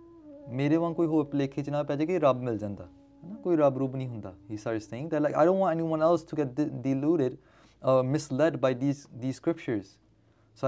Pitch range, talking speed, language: 125-160 Hz, 120 wpm, English